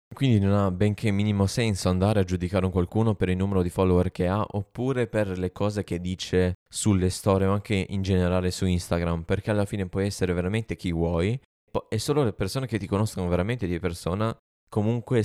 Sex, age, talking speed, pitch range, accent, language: male, 20-39, 200 wpm, 85-100 Hz, native, Italian